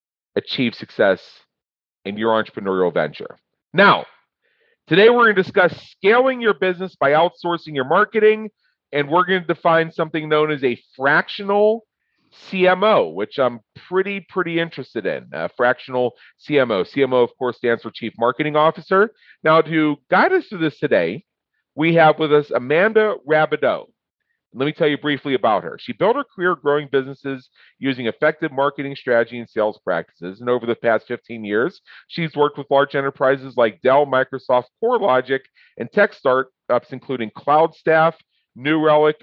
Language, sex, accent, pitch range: English, male, American, 130-170 Hz